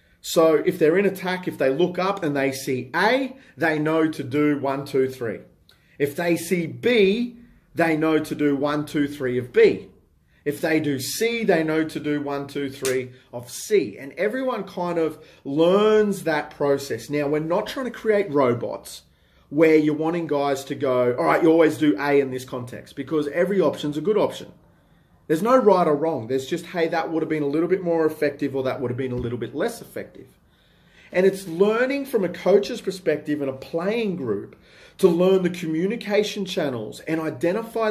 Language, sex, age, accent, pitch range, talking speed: English, male, 30-49, Australian, 145-190 Hz, 200 wpm